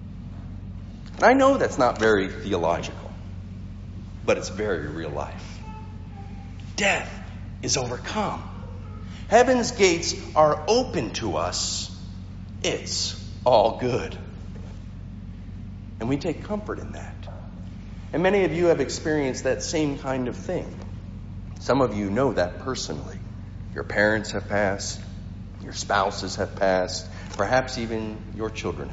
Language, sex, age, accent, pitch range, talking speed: English, male, 50-69, American, 95-135 Hz, 120 wpm